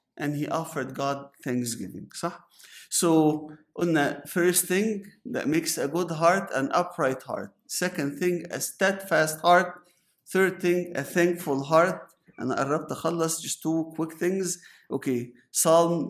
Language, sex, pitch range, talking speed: English, male, 125-165 Hz, 140 wpm